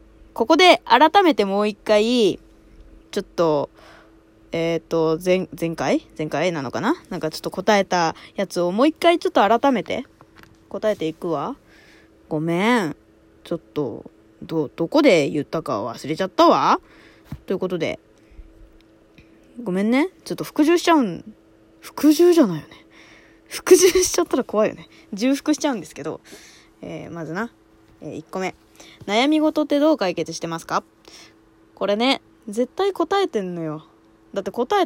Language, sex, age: Japanese, female, 20-39